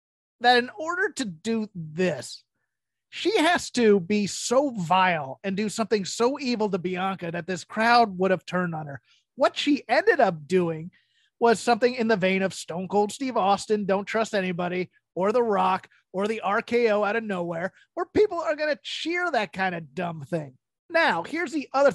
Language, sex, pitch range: English, male, 185-245 Hz